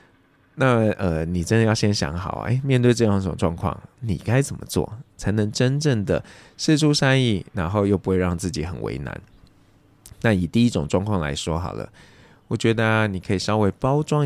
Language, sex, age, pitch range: Chinese, male, 20-39, 90-115 Hz